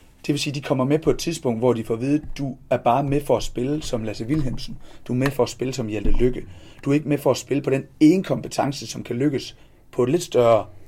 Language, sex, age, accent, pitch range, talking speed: Danish, male, 30-49, native, 115-140 Hz, 285 wpm